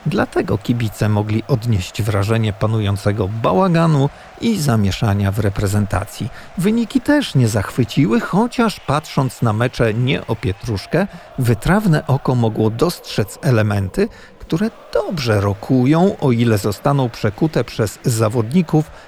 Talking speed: 115 wpm